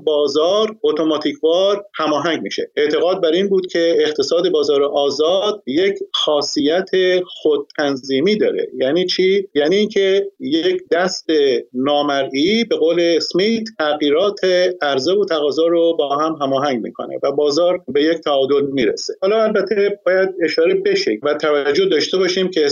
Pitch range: 150-225 Hz